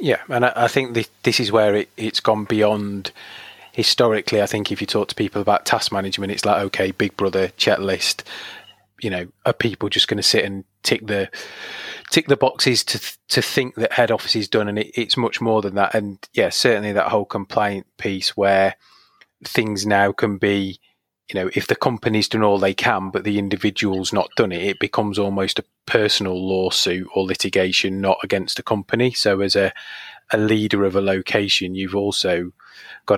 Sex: male